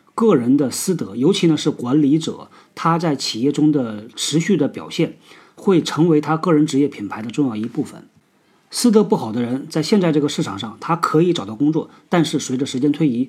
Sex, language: male, Chinese